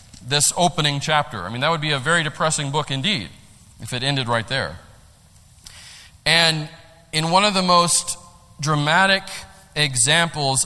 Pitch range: 125-160 Hz